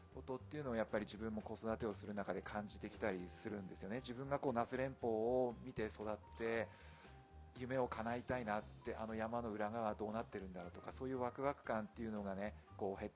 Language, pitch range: Japanese, 95-125 Hz